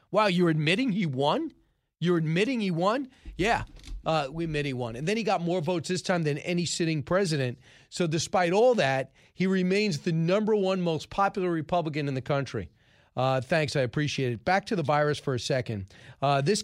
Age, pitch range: 40-59, 140-180 Hz